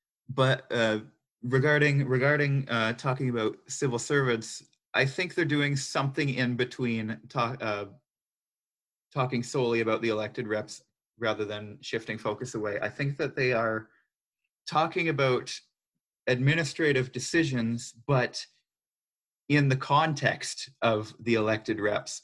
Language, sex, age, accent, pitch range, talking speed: English, male, 30-49, American, 115-140 Hz, 120 wpm